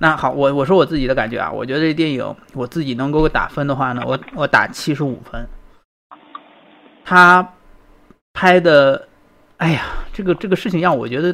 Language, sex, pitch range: Chinese, male, 145-200 Hz